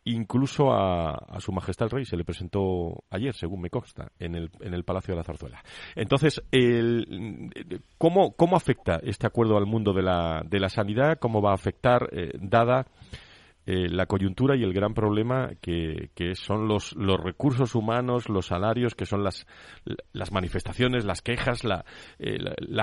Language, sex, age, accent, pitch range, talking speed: Spanish, male, 40-59, Spanish, 95-120 Hz, 180 wpm